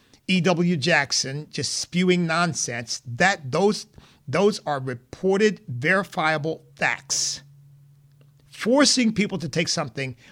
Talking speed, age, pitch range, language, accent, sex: 105 wpm, 50-69, 130-185 Hz, English, American, male